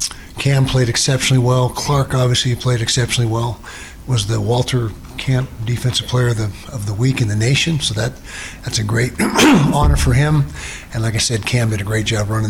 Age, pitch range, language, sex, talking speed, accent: 50-69, 95-125 Hz, English, male, 195 wpm, American